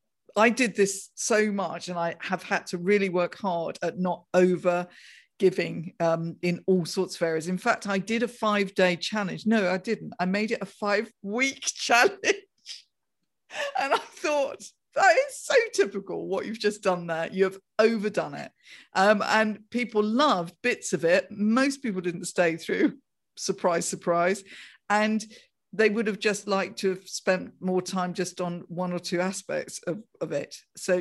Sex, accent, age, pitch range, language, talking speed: female, British, 50-69, 180-220 Hz, English, 180 wpm